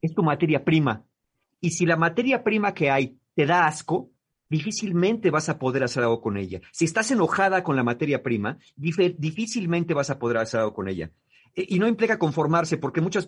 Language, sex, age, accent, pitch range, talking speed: Spanish, male, 40-59, Mexican, 130-170 Hz, 195 wpm